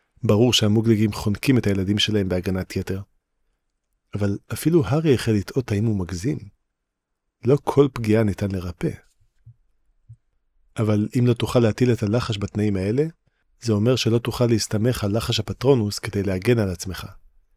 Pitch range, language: 100-125 Hz, Hebrew